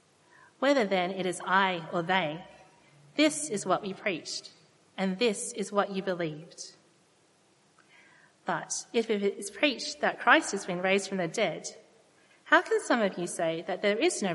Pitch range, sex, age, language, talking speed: 180-235 Hz, female, 40-59, English, 170 wpm